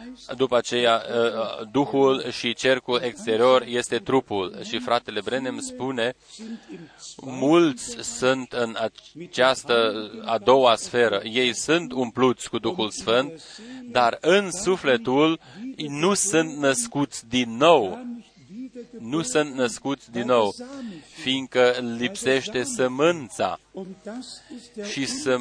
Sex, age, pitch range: male, 30-49, 120-155 Hz